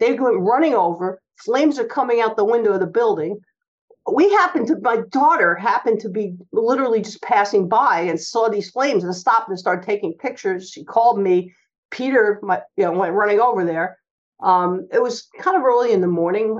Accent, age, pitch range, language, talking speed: American, 50-69, 190-270 Hz, English, 200 wpm